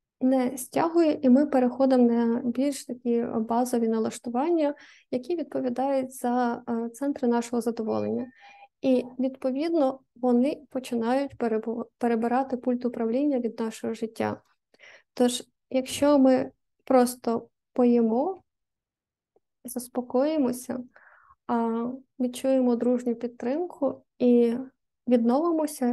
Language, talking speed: Ukrainian, 85 wpm